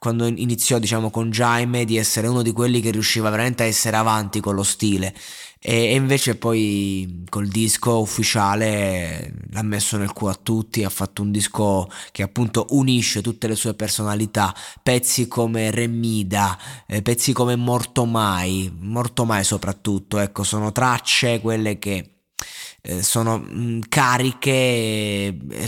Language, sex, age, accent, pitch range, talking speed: Italian, male, 20-39, native, 105-125 Hz, 145 wpm